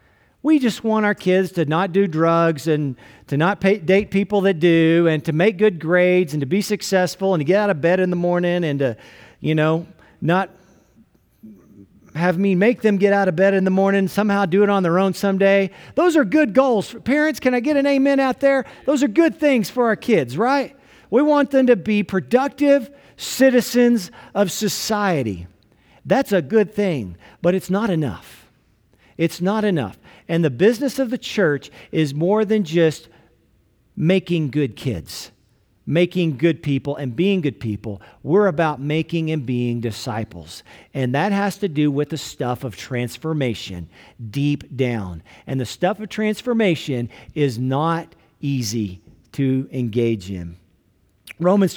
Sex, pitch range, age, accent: male, 140-205 Hz, 50-69, American